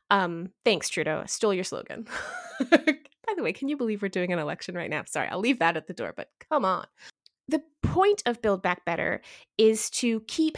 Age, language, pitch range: 20-39, English, 190-250 Hz